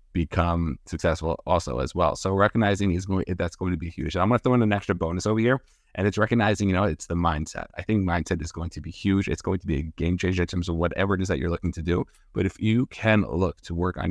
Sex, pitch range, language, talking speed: male, 85-100 Hz, English, 285 wpm